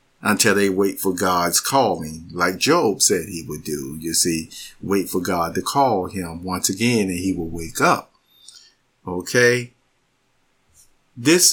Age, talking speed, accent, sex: 50-69, 150 wpm, American, male